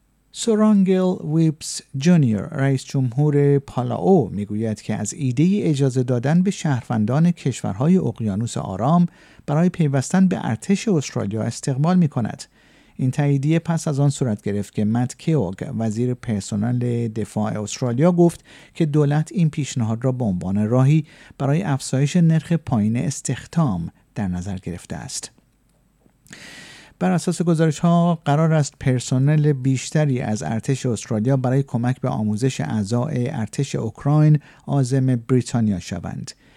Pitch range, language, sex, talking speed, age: 115-150 Hz, Persian, male, 130 wpm, 50-69